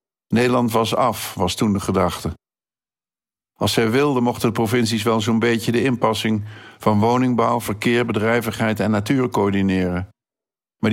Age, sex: 50-69, male